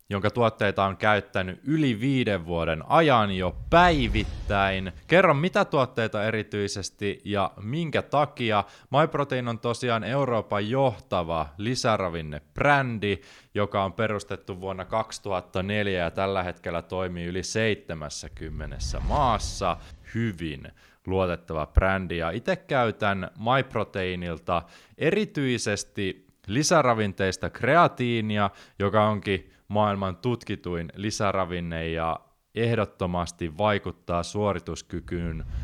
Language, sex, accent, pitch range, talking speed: Finnish, male, native, 90-115 Hz, 90 wpm